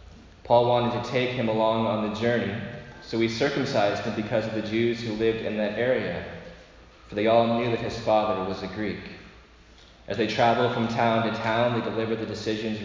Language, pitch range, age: English, 100-120 Hz, 20-39